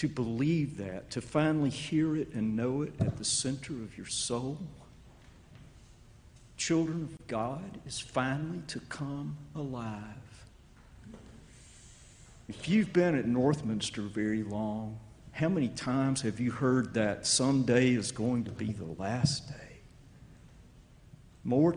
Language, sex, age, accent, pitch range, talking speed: English, male, 50-69, American, 115-145 Hz, 130 wpm